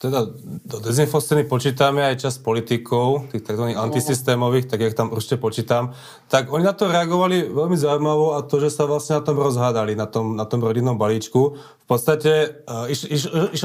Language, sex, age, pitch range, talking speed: Slovak, male, 30-49, 125-150 Hz, 170 wpm